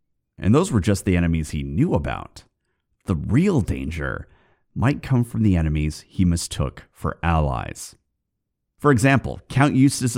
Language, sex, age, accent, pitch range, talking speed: English, male, 30-49, American, 85-120 Hz, 145 wpm